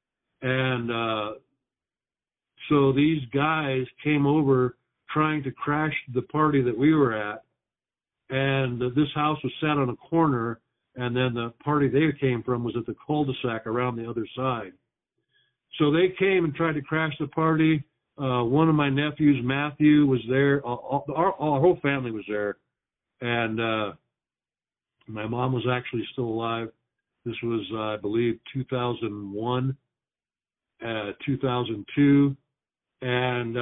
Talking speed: 140 wpm